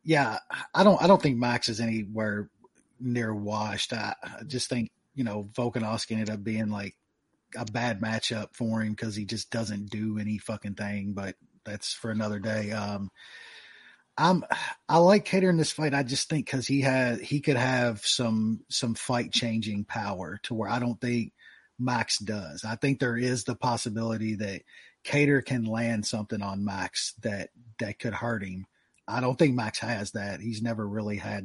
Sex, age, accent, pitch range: male, 30-49, American, 105-125 Hz